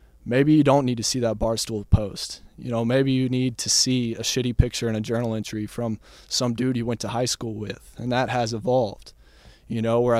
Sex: male